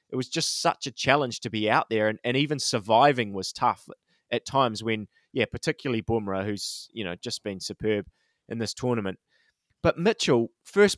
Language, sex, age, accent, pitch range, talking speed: English, male, 20-39, Australian, 120-145 Hz, 185 wpm